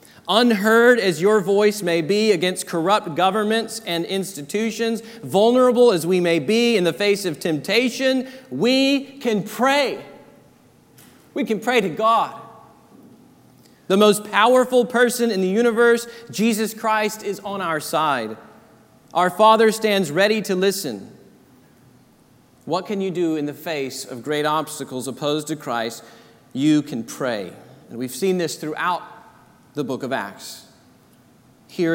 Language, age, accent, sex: English, 40-59, American, male